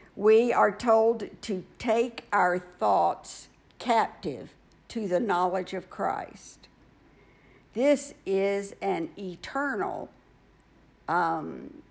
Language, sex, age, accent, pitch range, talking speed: English, female, 60-79, American, 185-240 Hz, 90 wpm